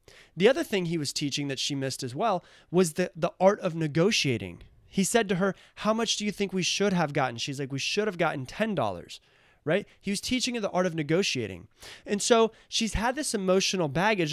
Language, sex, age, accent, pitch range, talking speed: English, male, 30-49, American, 140-195 Hz, 220 wpm